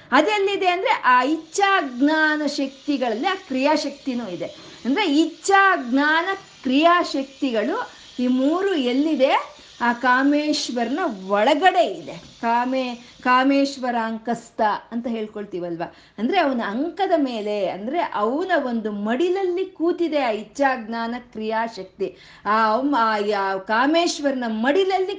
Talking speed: 100 wpm